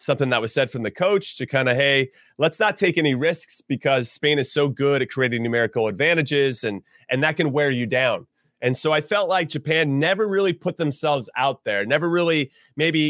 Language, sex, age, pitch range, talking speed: English, male, 30-49, 125-160 Hz, 215 wpm